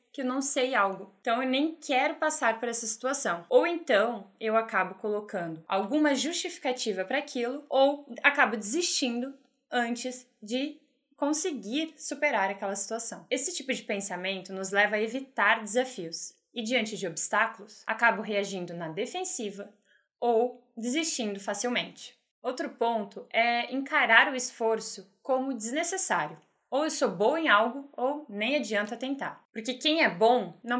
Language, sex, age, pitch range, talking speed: Portuguese, female, 20-39, 210-270 Hz, 145 wpm